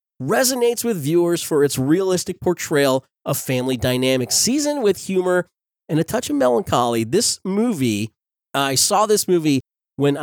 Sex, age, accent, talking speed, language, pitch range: male, 30-49, American, 145 wpm, English, 125-175 Hz